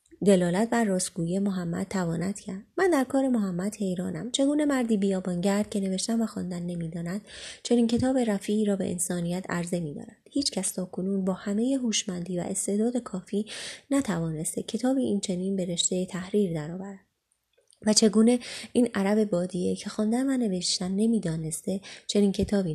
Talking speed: 155 wpm